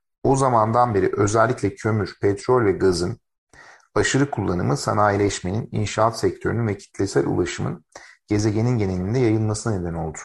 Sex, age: male, 50-69